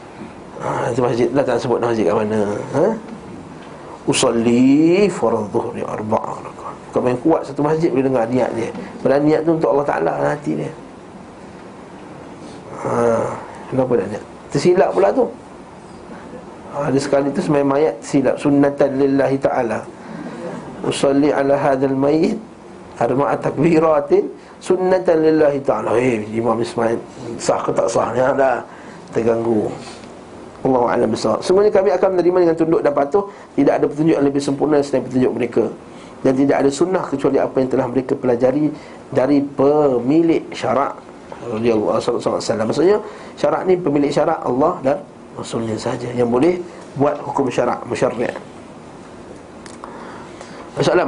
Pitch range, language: 125-160 Hz, Malay